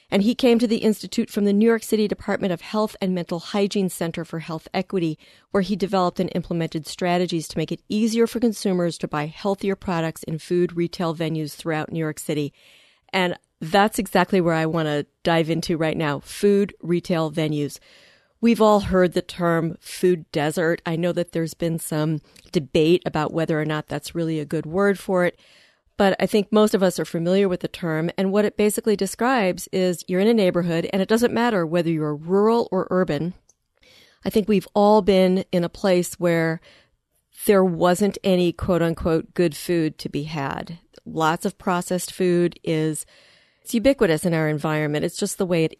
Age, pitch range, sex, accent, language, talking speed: 40-59, 165-200 Hz, female, American, English, 195 wpm